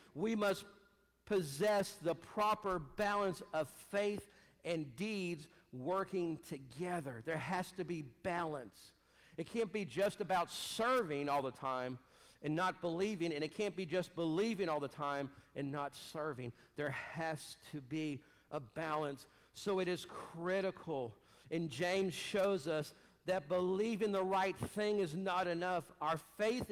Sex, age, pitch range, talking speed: male, 50-69, 150-195 Hz, 145 wpm